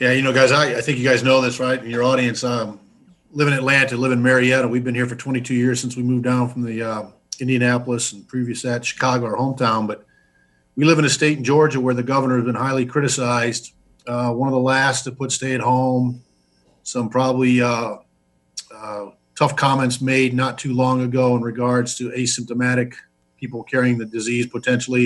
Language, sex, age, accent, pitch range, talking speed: English, male, 50-69, American, 120-135 Hz, 210 wpm